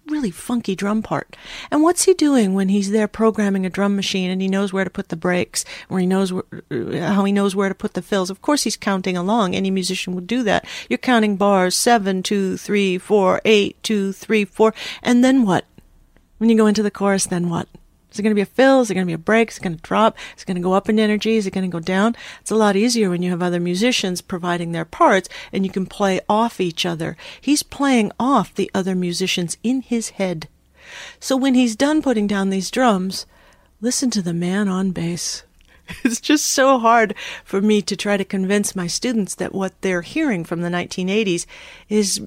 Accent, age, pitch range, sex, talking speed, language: American, 40-59, 185-225 Hz, female, 230 wpm, English